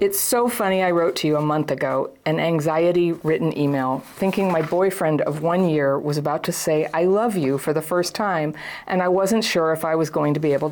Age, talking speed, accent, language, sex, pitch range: 50-69, 235 wpm, American, English, female, 150-190 Hz